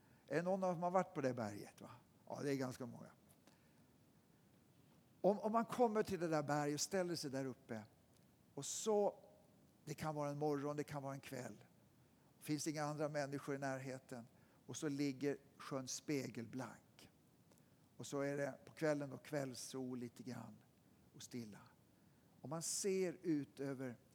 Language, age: Swedish, 60-79